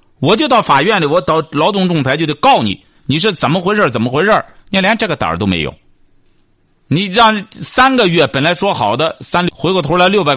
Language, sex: Chinese, male